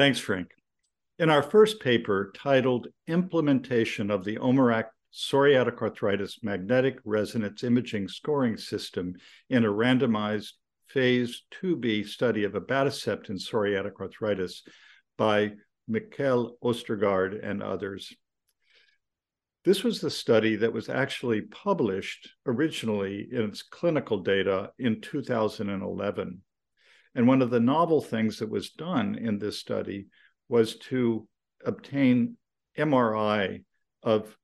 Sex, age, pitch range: male, 50-69, 105-135 Hz